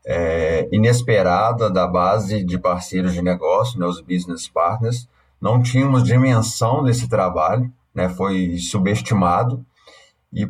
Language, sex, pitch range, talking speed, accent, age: English, male, 95-120 Hz, 115 wpm, Brazilian, 30-49